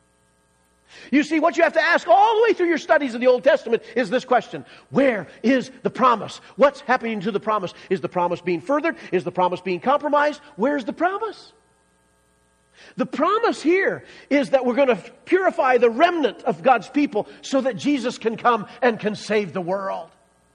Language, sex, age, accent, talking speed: English, male, 40-59, American, 195 wpm